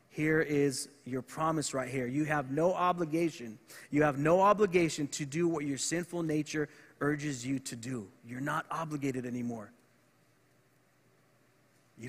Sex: male